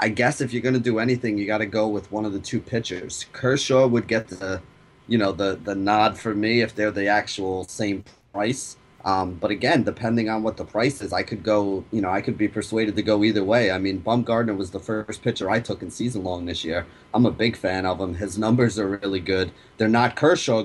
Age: 30-49